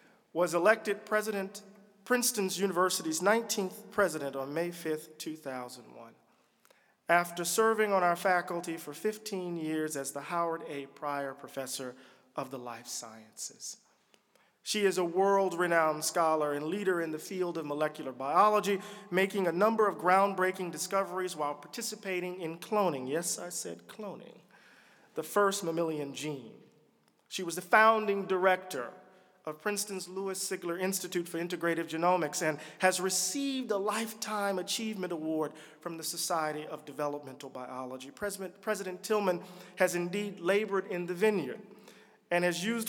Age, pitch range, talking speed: 40-59, 160-200 Hz, 135 wpm